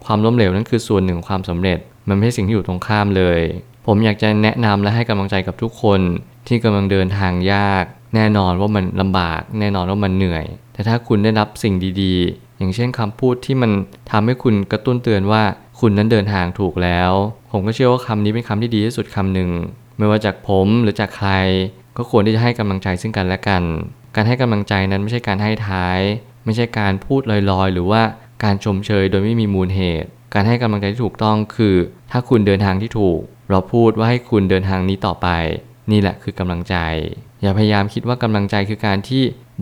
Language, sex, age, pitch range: Thai, male, 20-39, 95-115 Hz